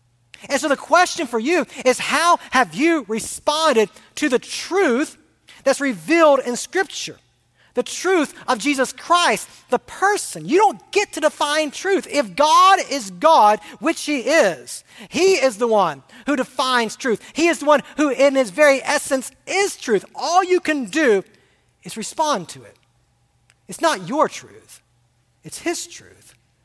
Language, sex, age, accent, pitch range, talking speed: English, male, 40-59, American, 175-275 Hz, 160 wpm